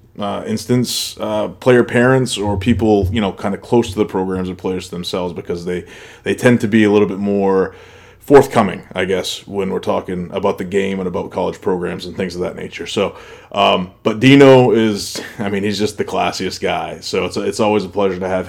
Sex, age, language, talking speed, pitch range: male, 20-39, English, 215 wpm, 95-105 Hz